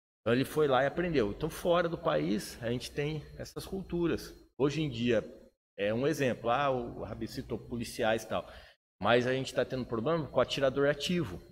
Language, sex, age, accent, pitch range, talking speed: Portuguese, male, 30-49, Brazilian, 105-135 Hz, 195 wpm